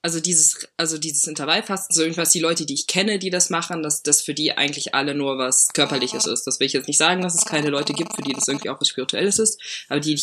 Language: German